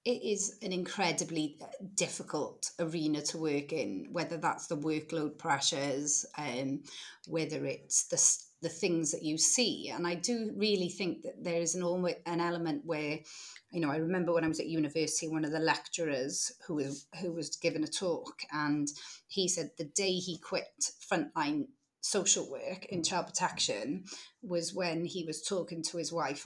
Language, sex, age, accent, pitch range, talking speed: English, female, 30-49, British, 155-180 Hz, 170 wpm